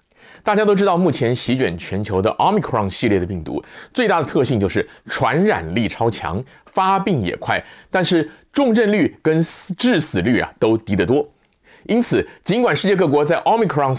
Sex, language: male, Chinese